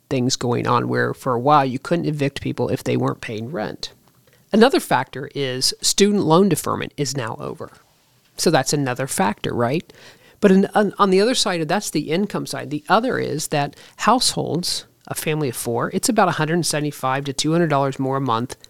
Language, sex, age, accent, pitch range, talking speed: English, male, 40-59, American, 145-200 Hz, 185 wpm